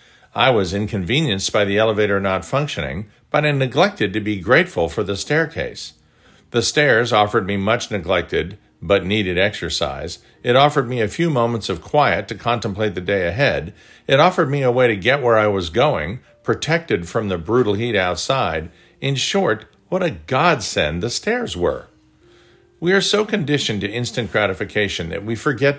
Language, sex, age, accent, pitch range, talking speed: English, male, 50-69, American, 105-150 Hz, 170 wpm